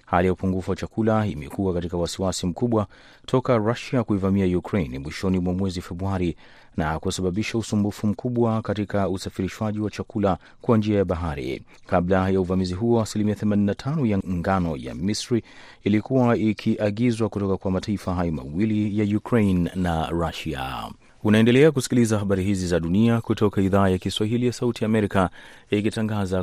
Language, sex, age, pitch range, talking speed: Swahili, male, 30-49, 90-110 Hz, 145 wpm